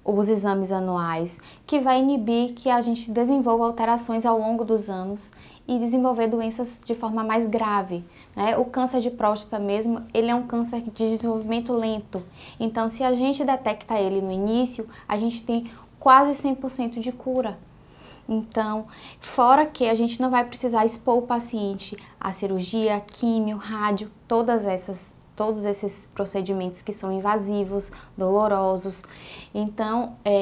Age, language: 10-29, Portuguese